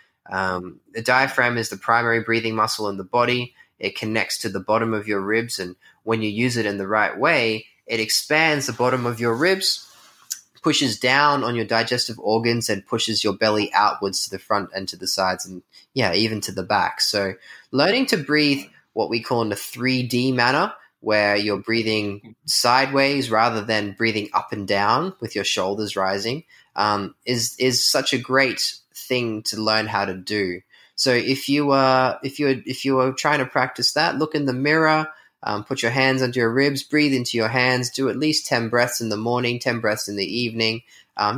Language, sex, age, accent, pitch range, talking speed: English, male, 20-39, Australian, 105-130 Hz, 200 wpm